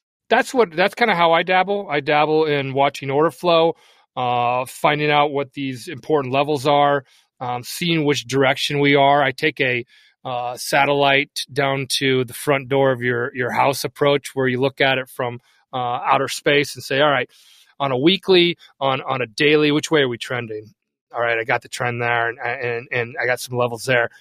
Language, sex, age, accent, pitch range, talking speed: English, male, 30-49, American, 125-150 Hz, 205 wpm